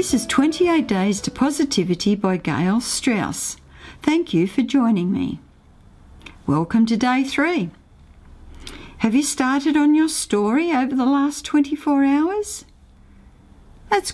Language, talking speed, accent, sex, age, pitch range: English, 125 wpm, Australian, female, 50-69, 185-280 Hz